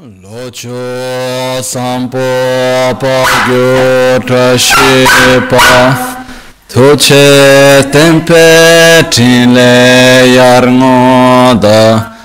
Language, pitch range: Italian, 125-165 Hz